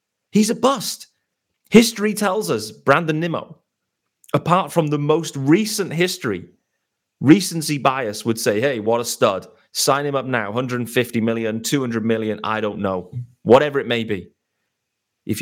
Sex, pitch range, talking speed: male, 115-180 Hz, 150 wpm